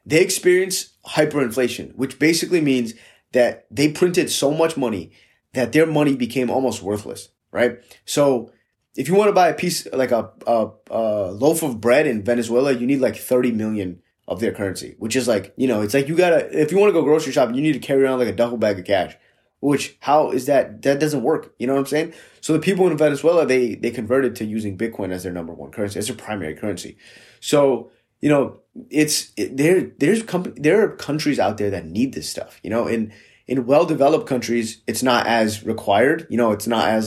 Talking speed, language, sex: 220 wpm, English, male